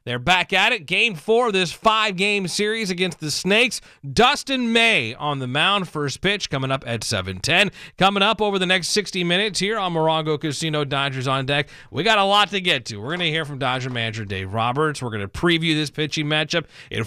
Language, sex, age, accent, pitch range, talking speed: English, male, 30-49, American, 140-185 Hz, 220 wpm